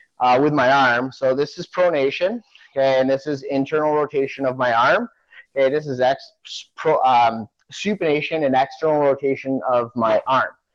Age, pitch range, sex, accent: 30-49, 135-175 Hz, male, American